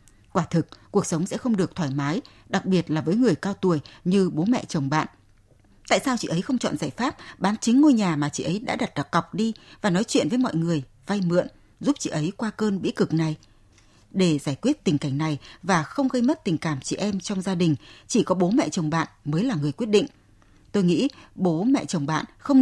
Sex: female